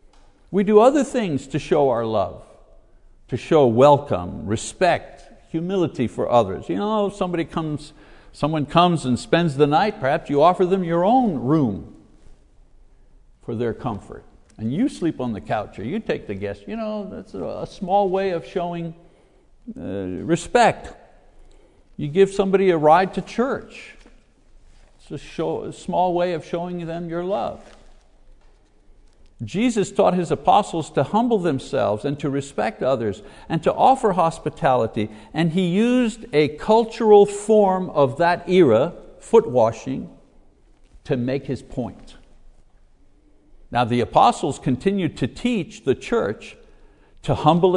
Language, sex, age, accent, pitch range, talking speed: English, male, 60-79, American, 135-195 Hz, 140 wpm